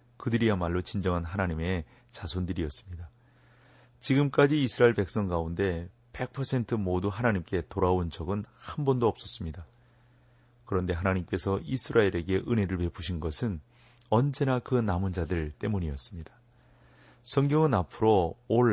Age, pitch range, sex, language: 40-59, 90-120 Hz, male, Korean